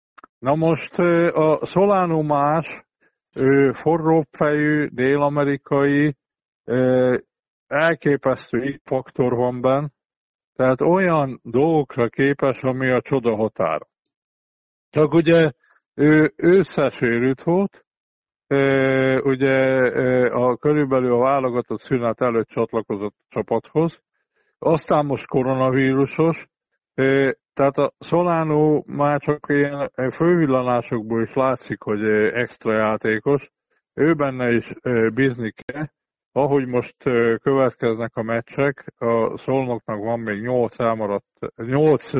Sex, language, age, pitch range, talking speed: male, Hungarian, 50-69, 120-145 Hz, 90 wpm